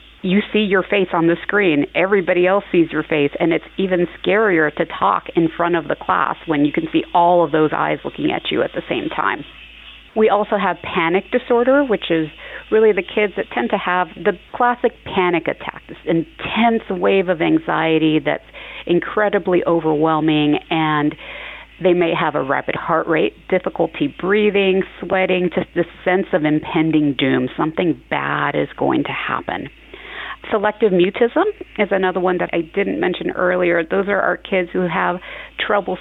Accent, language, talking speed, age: American, English, 175 wpm, 40-59